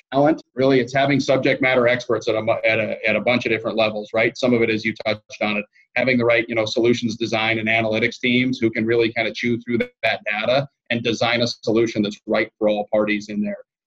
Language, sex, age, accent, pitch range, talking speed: English, male, 30-49, American, 110-125 Hz, 240 wpm